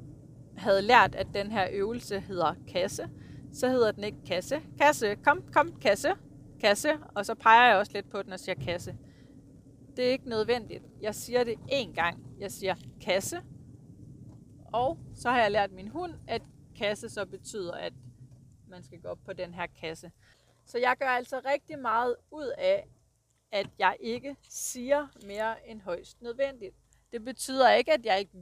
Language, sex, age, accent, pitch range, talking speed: Danish, female, 30-49, native, 180-250 Hz, 175 wpm